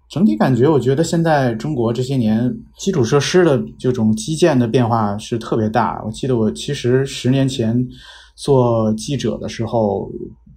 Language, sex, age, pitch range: Chinese, male, 20-39, 110-145 Hz